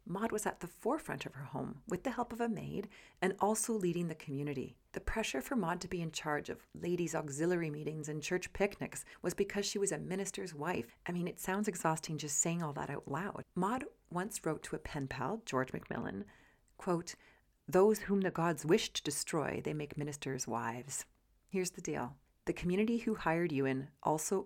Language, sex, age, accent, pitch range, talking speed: English, female, 30-49, American, 150-195 Hz, 200 wpm